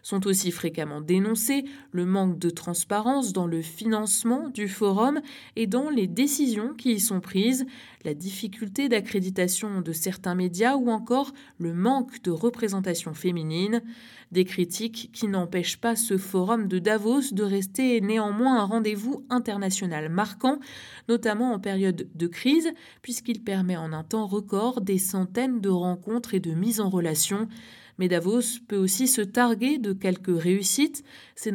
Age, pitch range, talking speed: 20-39, 185-235 Hz, 150 wpm